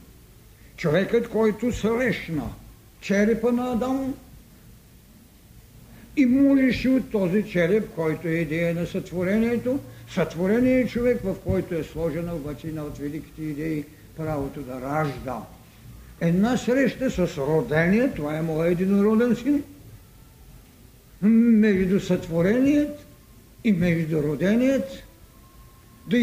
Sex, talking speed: male, 105 wpm